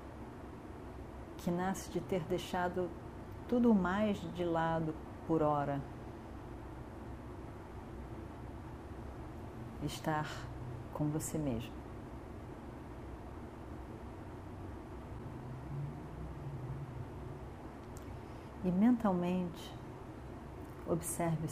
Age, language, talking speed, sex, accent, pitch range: 40-59, Portuguese, 50 wpm, female, Brazilian, 110-170 Hz